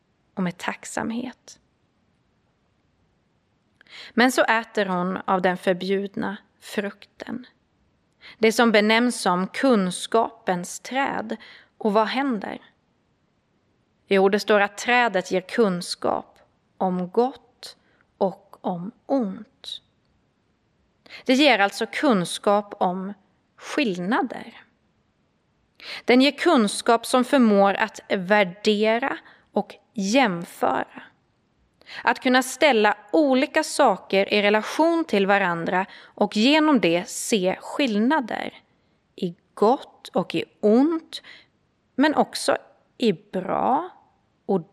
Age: 30-49